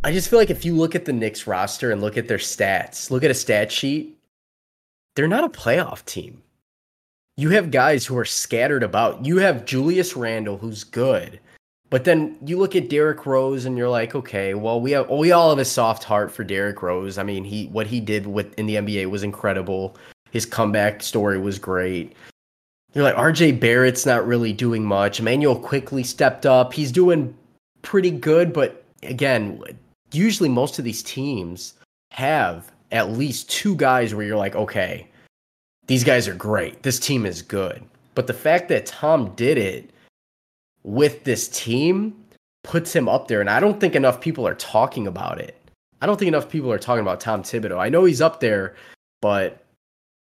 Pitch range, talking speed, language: 105-150 Hz, 190 wpm, English